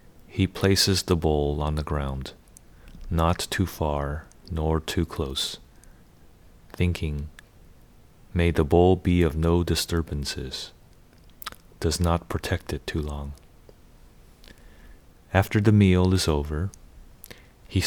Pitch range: 80-90 Hz